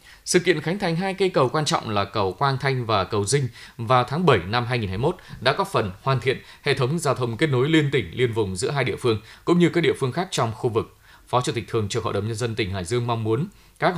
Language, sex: Vietnamese, male